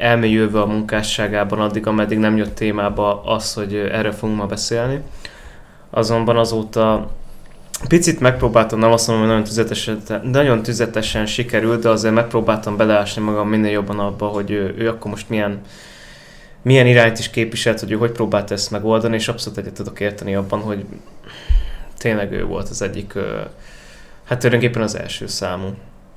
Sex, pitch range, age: male, 100-115 Hz, 20-39